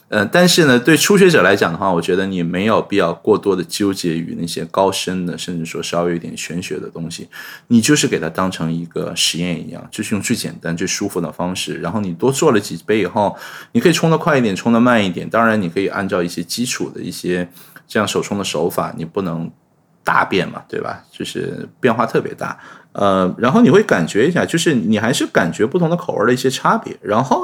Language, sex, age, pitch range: Chinese, male, 20-39, 85-110 Hz